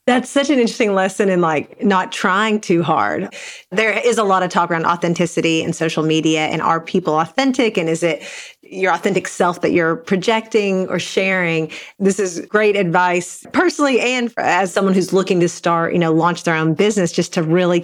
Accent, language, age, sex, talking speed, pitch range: American, English, 30-49, female, 195 wpm, 175-230 Hz